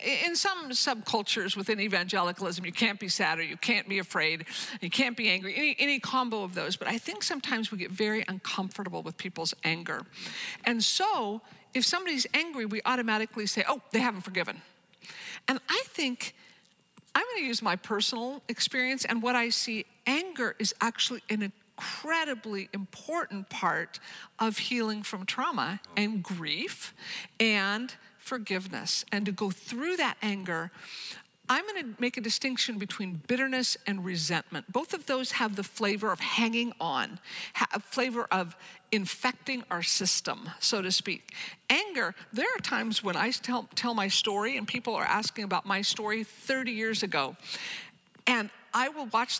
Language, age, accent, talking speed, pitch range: English, 50-69, American, 160 wpm, 195-250 Hz